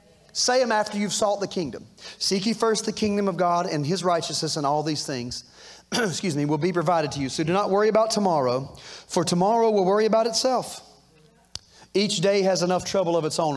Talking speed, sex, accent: 210 wpm, male, American